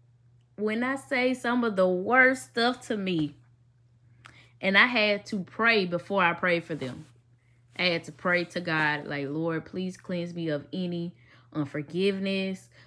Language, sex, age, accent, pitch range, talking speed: English, female, 10-29, American, 150-215 Hz, 160 wpm